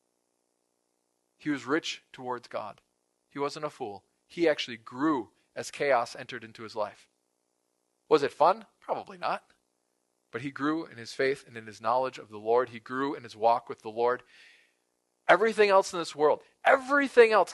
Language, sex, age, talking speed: English, male, 40-59, 175 wpm